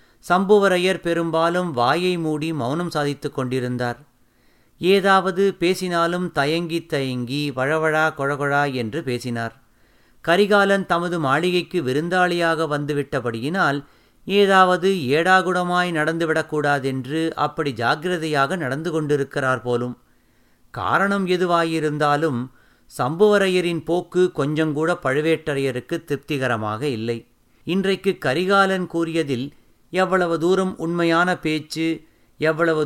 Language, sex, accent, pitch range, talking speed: Tamil, male, native, 135-175 Hz, 80 wpm